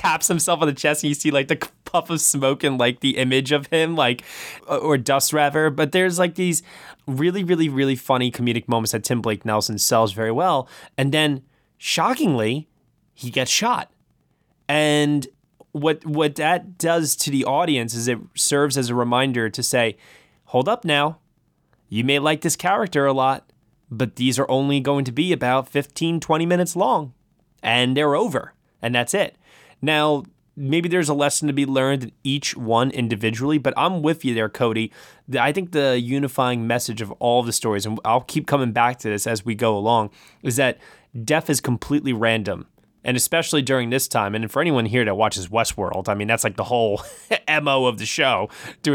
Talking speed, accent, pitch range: 190 wpm, American, 115-150 Hz